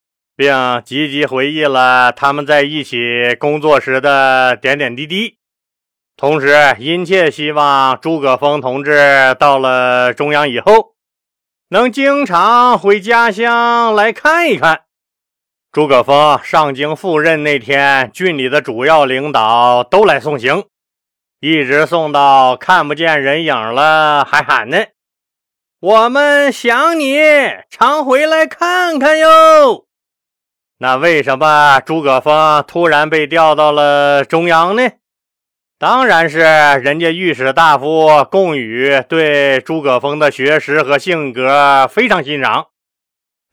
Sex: male